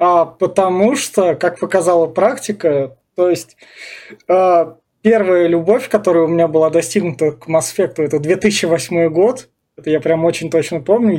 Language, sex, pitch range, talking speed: Russian, male, 165-200 Hz, 140 wpm